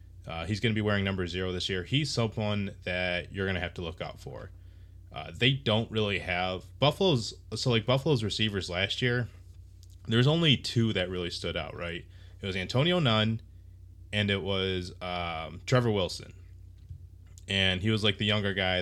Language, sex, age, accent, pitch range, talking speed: English, male, 20-39, American, 90-105 Hz, 185 wpm